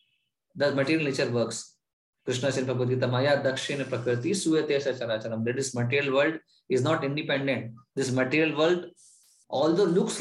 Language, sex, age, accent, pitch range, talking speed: English, male, 20-39, Indian, 130-175 Hz, 105 wpm